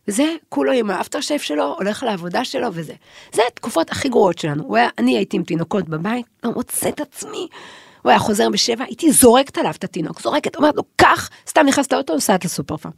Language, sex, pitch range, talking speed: Hebrew, female, 190-270 Hz, 205 wpm